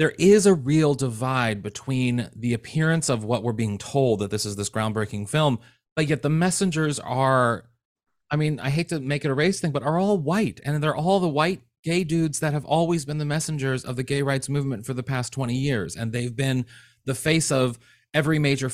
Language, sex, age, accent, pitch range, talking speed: English, male, 30-49, American, 120-155 Hz, 220 wpm